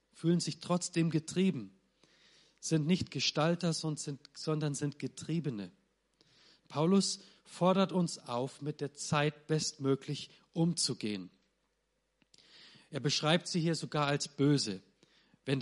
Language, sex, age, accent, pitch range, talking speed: German, male, 40-59, German, 125-170 Hz, 105 wpm